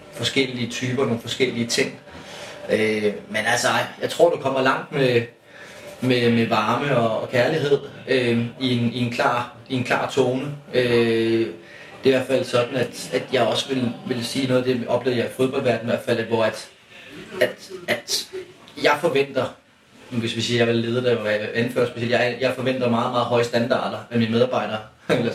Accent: native